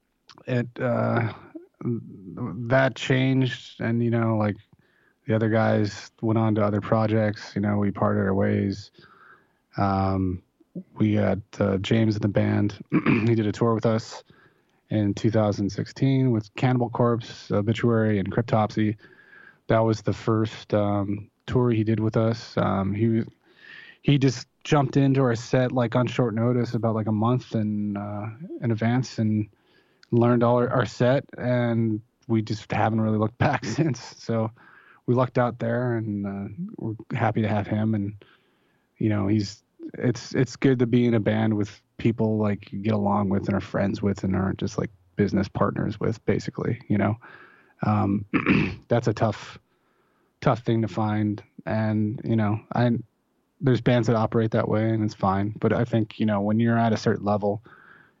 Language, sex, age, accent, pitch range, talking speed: English, male, 20-39, American, 105-120 Hz, 170 wpm